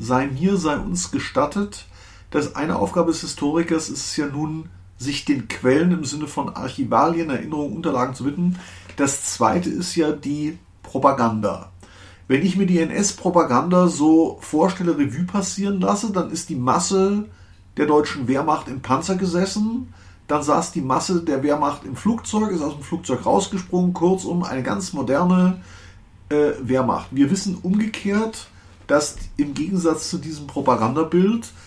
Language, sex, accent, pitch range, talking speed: German, male, German, 130-185 Hz, 150 wpm